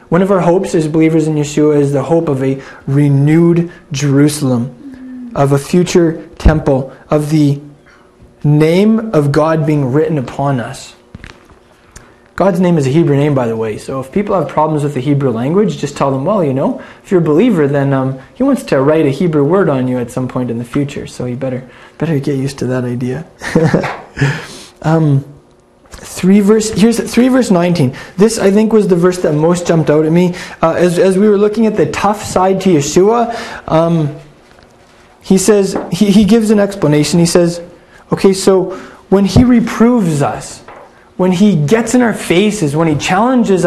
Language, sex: English, male